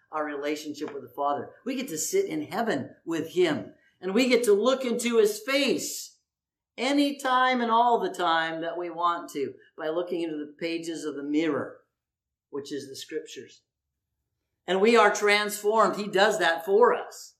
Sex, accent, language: male, American, English